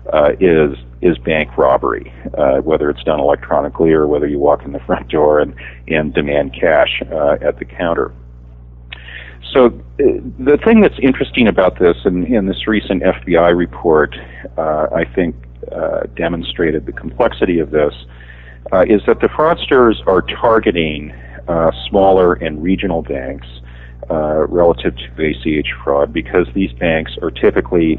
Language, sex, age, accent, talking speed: English, male, 50-69, American, 150 wpm